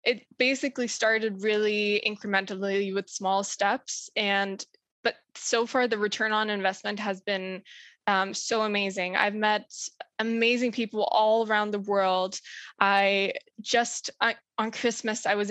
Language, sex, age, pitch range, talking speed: English, female, 10-29, 195-230 Hz, 140 wpm